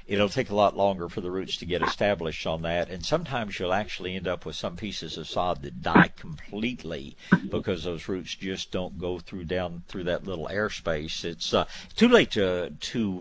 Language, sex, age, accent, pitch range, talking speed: English, male, 60-79, American, 85-105 Hz, 205 wpm